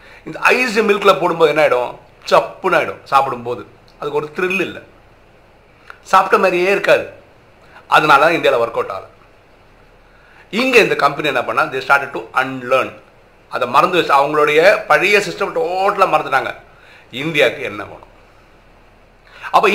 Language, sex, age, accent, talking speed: Tamil, male, 50-69, native, 130 wpm